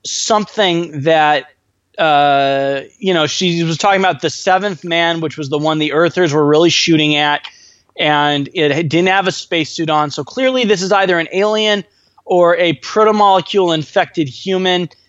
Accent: American